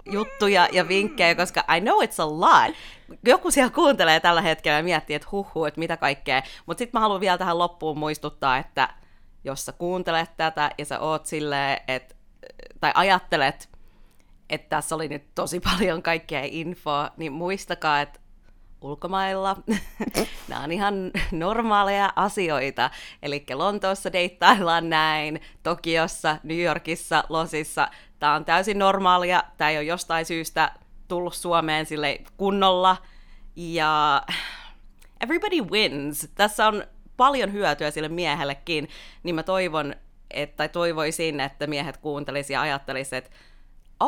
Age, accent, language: 30-49, native, Finnish